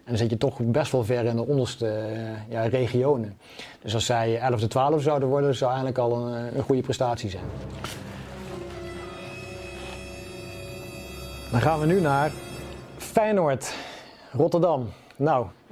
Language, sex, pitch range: Dutch, male, 115-135 Hz